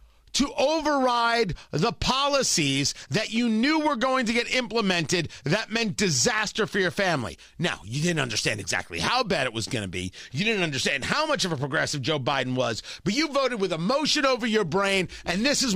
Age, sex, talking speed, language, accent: 40-59, male, 200 wpm, English, American